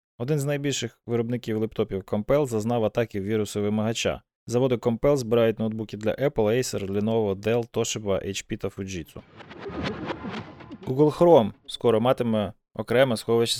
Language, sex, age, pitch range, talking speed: Ukrainian, male, 20-39, 110-130 Hz, 125 wpm